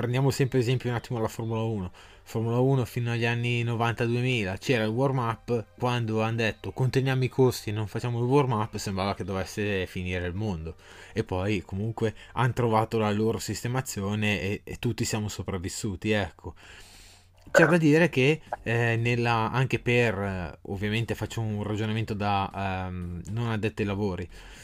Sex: male